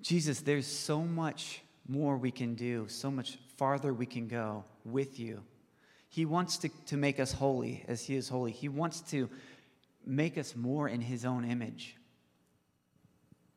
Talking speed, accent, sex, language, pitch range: 165 wpm, American, male, English, 120-150 Hz